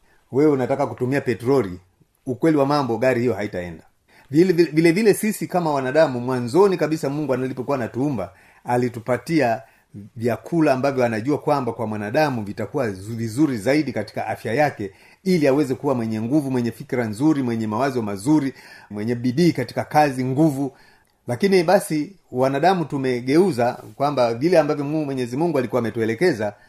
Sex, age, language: male, 30-49, Swahili